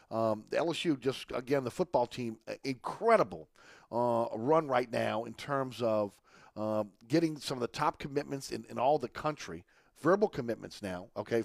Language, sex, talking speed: English, male, 170 wpm